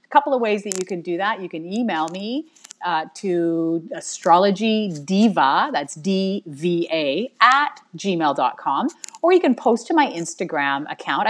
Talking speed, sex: 145 wpm, female